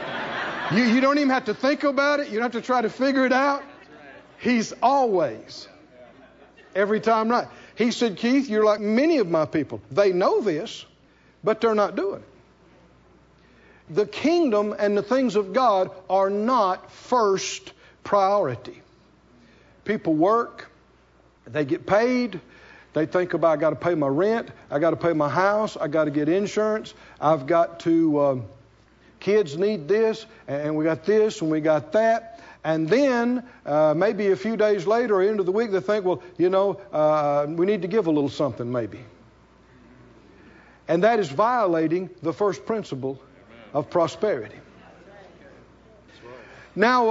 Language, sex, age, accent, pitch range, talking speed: English, male, 50-69, American, 160-235 Hz, 165 wpm